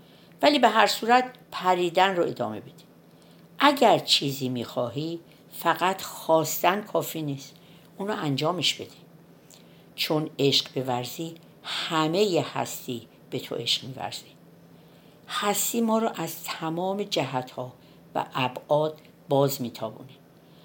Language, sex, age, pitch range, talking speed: Persian, female, 50-69, 135-205 Hz, 110 wpm